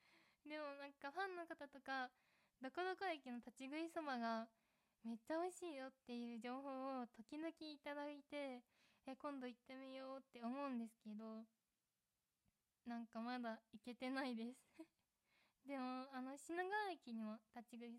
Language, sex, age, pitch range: Japanese, female, 20-39, 220-280 Hz